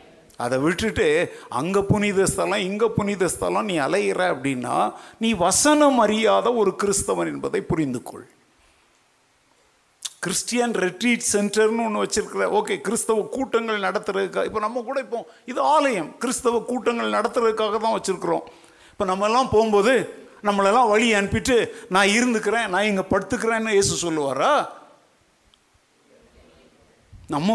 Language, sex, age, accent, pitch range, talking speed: Tamil, male, 50-69, native, 185-240 Hz, 115 wpm